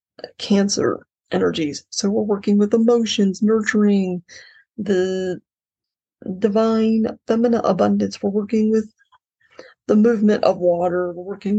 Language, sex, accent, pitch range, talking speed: English, female, American, 195-230 Hz, 110 wpm